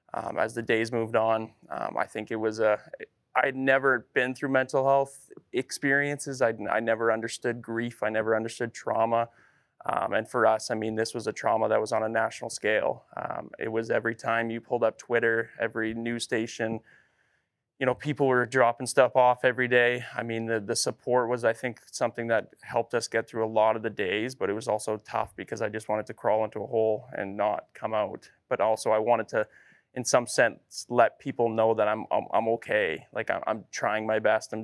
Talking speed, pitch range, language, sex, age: 215 wpm, 110-120 Hz, English, male, 20-39